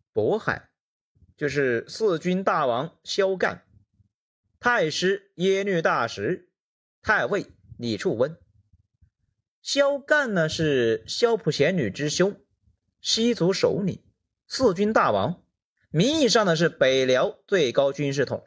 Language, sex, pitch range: Chinese, male, 135-230 Hz